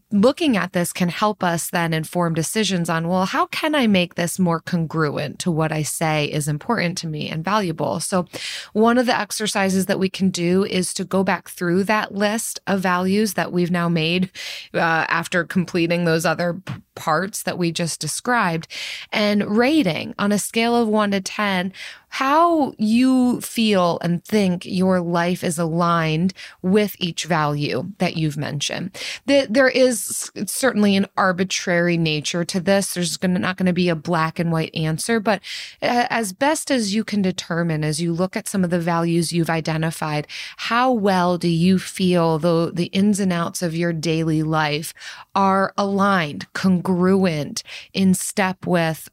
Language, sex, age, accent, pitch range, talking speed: English, female, 20-39, American, 165-200 Hz, 175 wpm